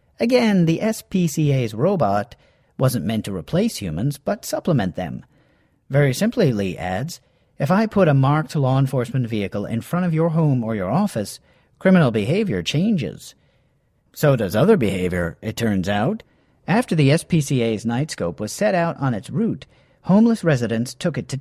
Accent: American